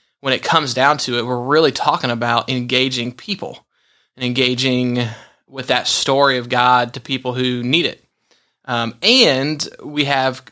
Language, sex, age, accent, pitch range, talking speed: English, male, 20-39, American, 125-140 Hz, 160 wpm